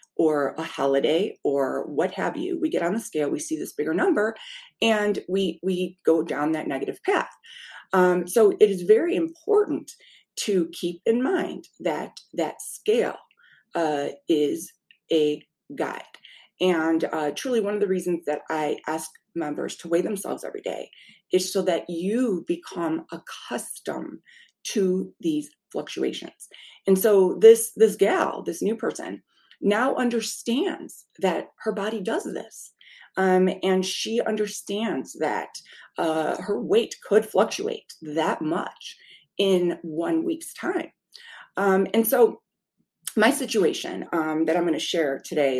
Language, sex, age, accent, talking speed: English, female, 30-49, American, 145 wpm